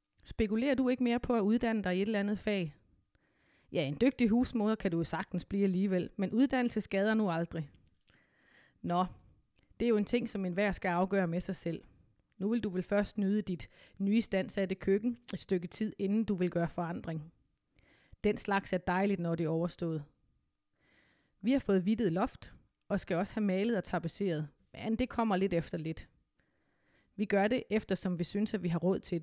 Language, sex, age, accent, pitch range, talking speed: Danish, female, 30-49, native, 180-220 Hz, 200 wpm